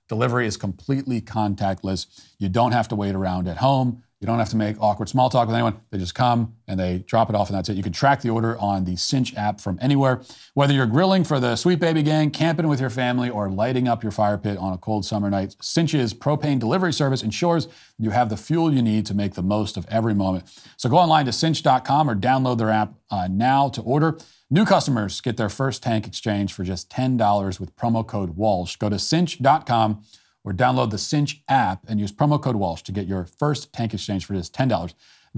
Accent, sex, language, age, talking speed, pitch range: American, male, English, 40-59, 225 wpm, 100-135 Hz